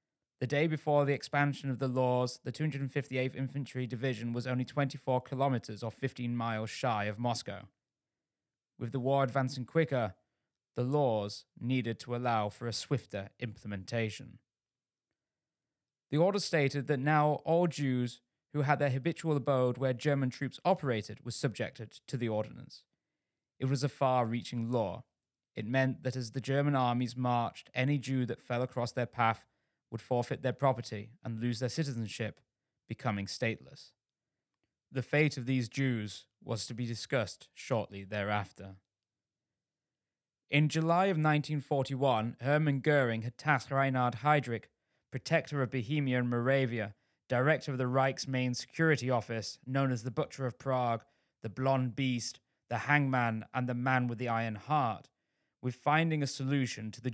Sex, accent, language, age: male, British, English, 20-39